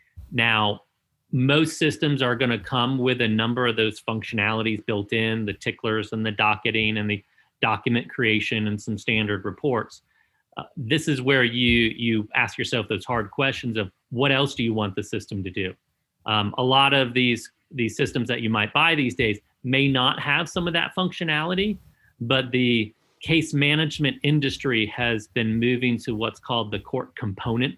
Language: English